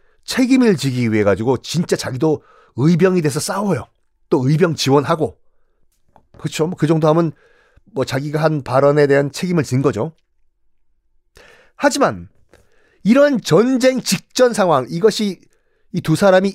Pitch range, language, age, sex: 140-225 Hz, Korean, 40-59, male